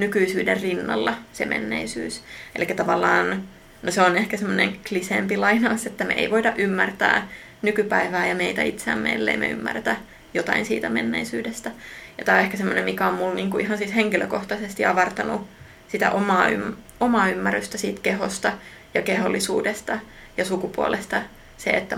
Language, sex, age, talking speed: Finnish, female, 20-39, 140 wpm